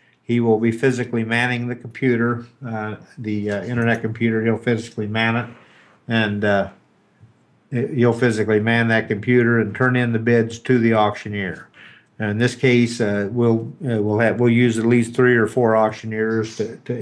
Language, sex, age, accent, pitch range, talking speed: English, male, 50-69, American, 105-120 Hz, 175 wpm